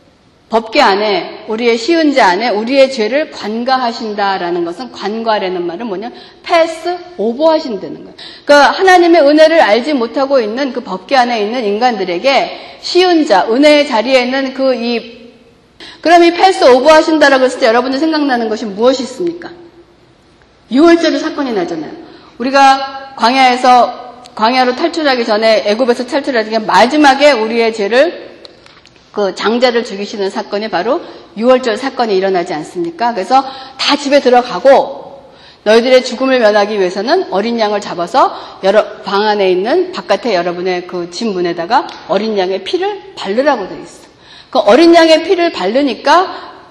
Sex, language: female, Korean